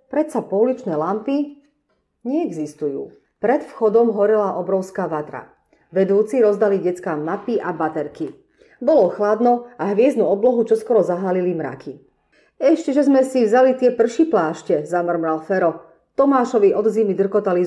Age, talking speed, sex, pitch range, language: 30-49, 120 wpm, female, 180-265 Hz, Slovak